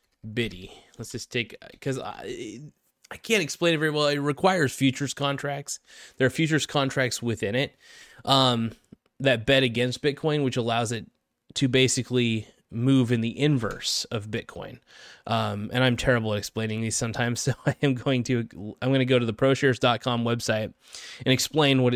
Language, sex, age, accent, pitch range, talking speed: English, male, 20-39, American, 120-140 Hz, 170 wpm